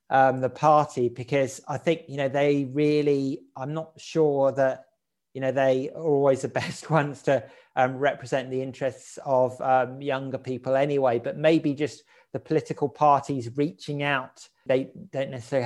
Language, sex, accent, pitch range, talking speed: English, male, British, 125-140 Hz, 165 wpm